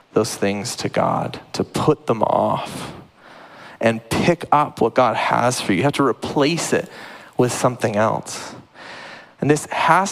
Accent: American